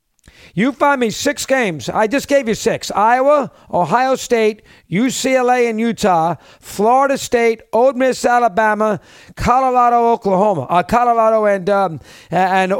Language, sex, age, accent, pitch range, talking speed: English, male, 50-69, American, 200-255 Hz, 130 wpm